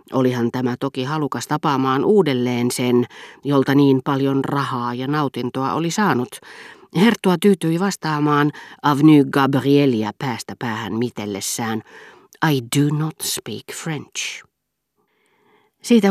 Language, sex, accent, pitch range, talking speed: Finnish, female, native, 125-160 Hz, 110 wpm